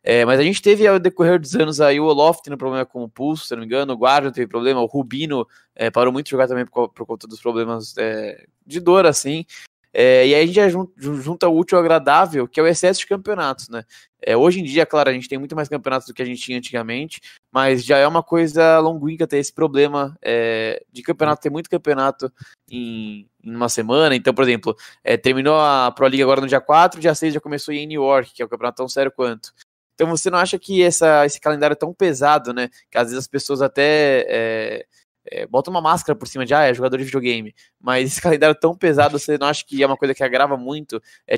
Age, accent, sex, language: 20-39, Brazilian, male, Portuguese